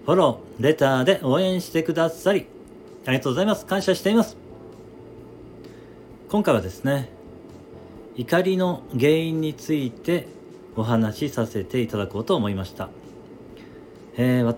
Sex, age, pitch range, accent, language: male, 40-59, 95-125 Hz, native, Japanese